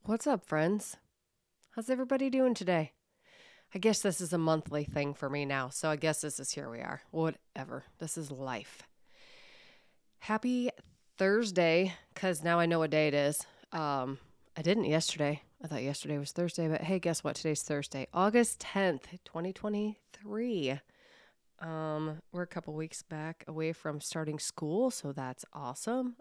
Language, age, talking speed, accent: English, 30-49, 160 wpm, American